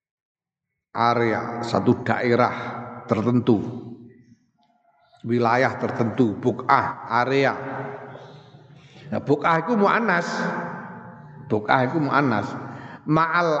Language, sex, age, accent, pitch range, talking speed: Indonesian, male, 50-69, native, 120-160 Hz, 70 wpm